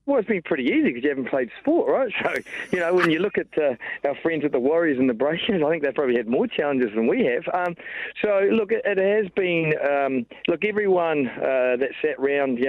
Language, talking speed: English, 240 wpm